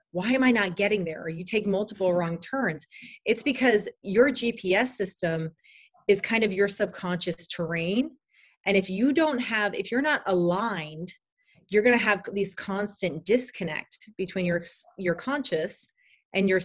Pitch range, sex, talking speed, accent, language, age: 175-235 Hz, female, 160 wpm, American, English, 30-49